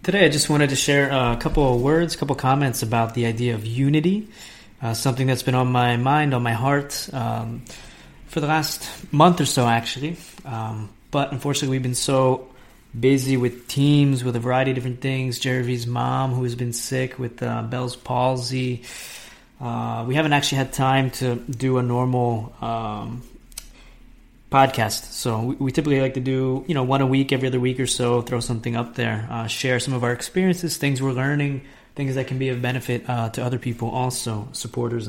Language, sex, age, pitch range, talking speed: English, male, 20-39, 120-140 Hz, 195 wpm